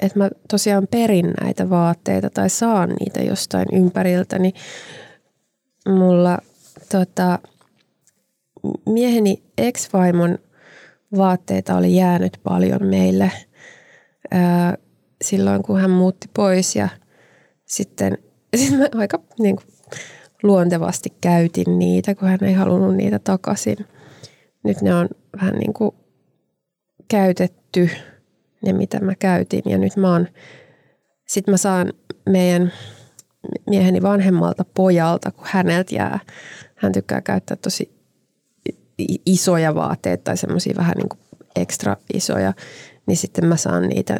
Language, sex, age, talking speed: Finnish, female, 20-39, 105 wpm